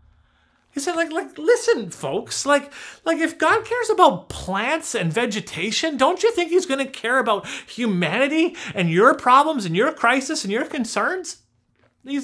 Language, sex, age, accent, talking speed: English, male, 30-49, American, 165 wpm